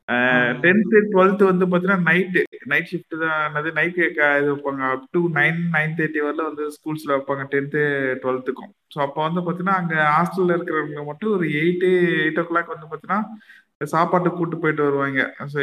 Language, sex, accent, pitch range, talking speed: Tamil, male, native, 145-180 Hz, 140 wpm